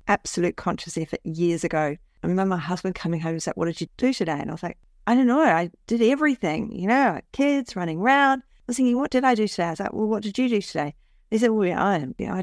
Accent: Australian